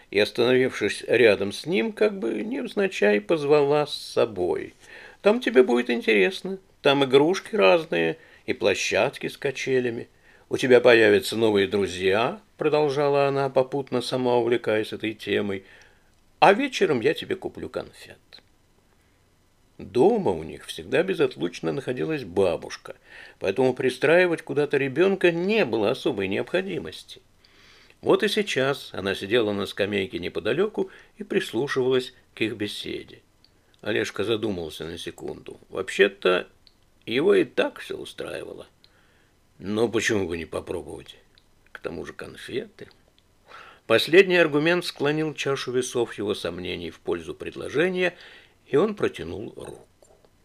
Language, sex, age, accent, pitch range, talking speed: Russian, male, 50-69, native, 130-215 Hz, 120 wpm